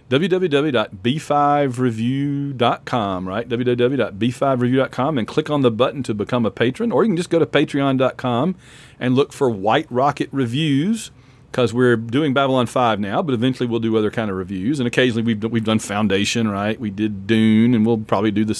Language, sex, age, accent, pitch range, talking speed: English, male, 40-59, American, 110-140 Hz, 175 wpm